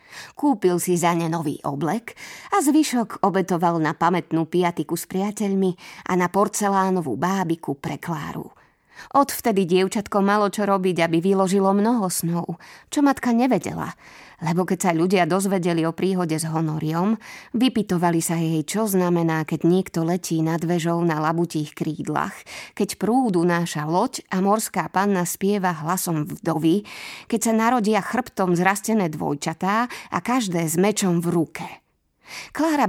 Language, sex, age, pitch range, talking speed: Slovak, female, 20-39, 170-225 Hz, 140 wpm